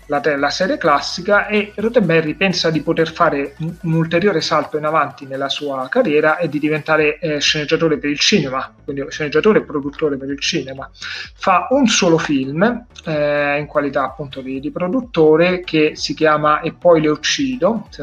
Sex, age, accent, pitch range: male, 30-49, native, 140-170 Hz